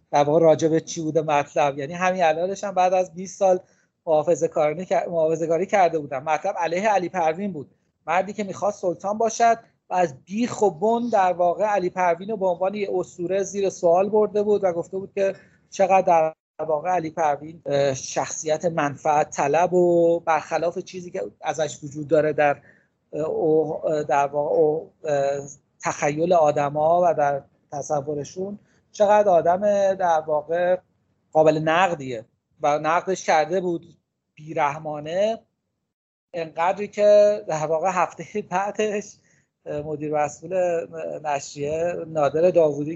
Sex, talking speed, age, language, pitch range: male, 130 wpm, 40-59, Persian, 150-190 Hz